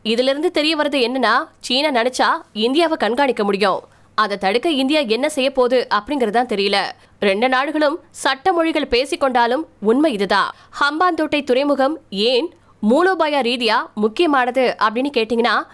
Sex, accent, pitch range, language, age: female, native, 240-300 Hz, Tamil, 20-39